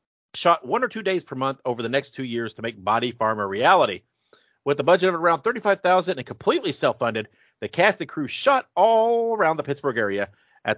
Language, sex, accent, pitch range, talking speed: English, male, American, 120-175 Hz, 210 wpm